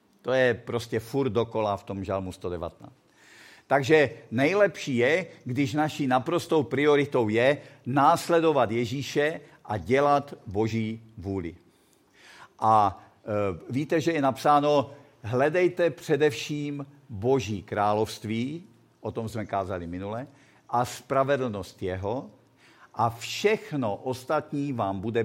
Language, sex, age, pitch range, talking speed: Czech, male, 50-69, 110-150 Hz, 110 wpm